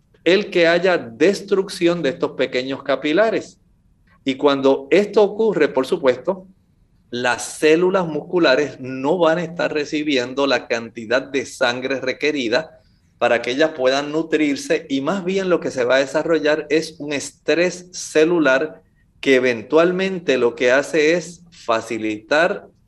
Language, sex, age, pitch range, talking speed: Spanish, male, 40-59, 130-175 Hz, 135 wpm